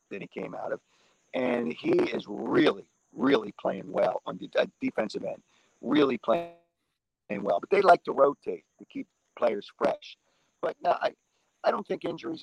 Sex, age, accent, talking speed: male, 50-69, American, 175 wpm